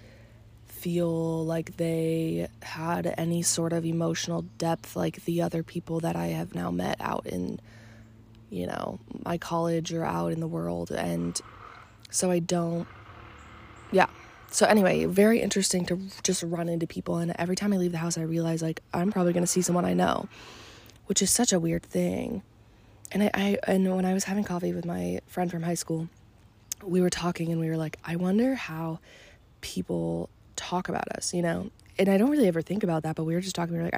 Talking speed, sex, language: 200 wpm, female, English